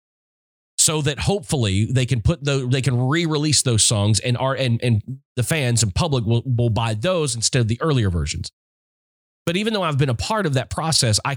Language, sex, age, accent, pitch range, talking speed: English, male, 30-49, American, 105-135 Hz, 210 wpm